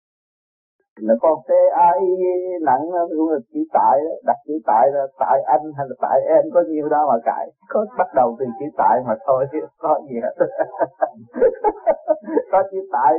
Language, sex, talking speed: Vietnamese, male, 180 wpm